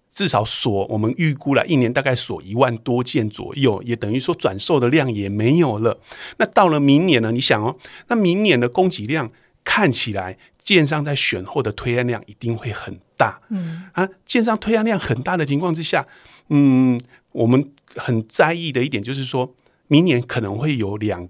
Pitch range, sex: 115-155 Hz, male